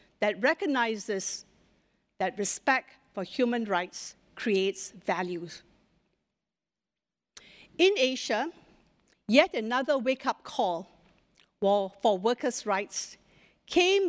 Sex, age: female, 50-69